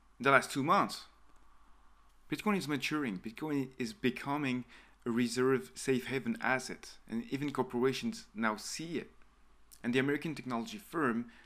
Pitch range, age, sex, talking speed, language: 105-130 Hz, 30-49, male, 135 wpm, English